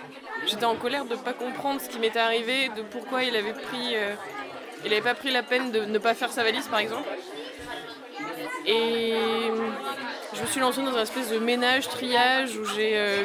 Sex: female